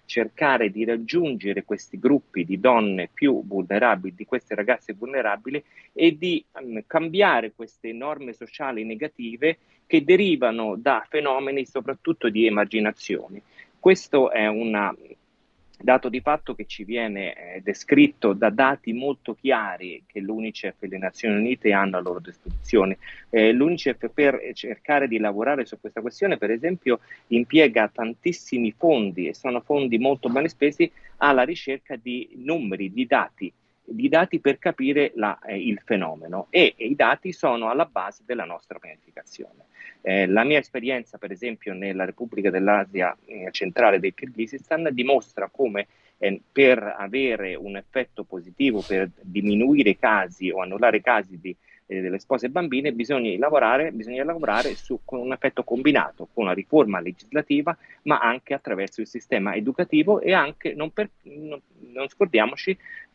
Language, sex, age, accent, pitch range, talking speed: Italian, male, 30-49, native, 105-145 Hz, 150 wpm